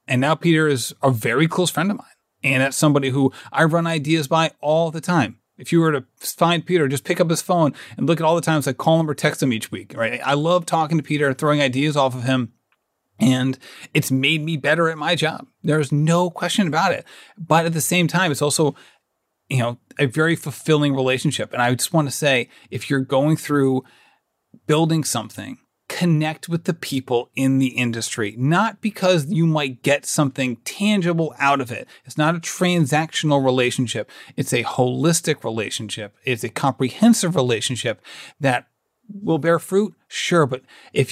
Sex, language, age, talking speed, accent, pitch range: male, English, 30-49, 195 wpm, American, 130-165 Hz